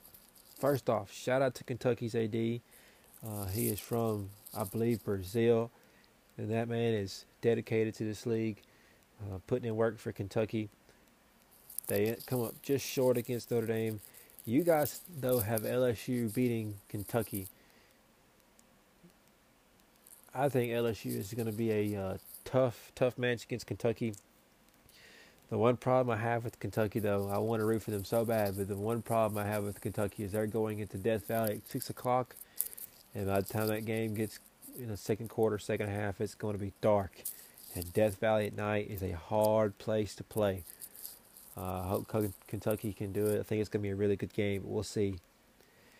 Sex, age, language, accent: male, 20-39, English, American